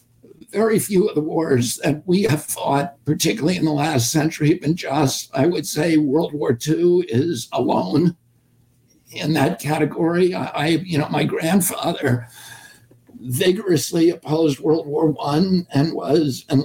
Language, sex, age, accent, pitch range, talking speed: English, male, 60-79, American, 140-170 Hz, 150 wpm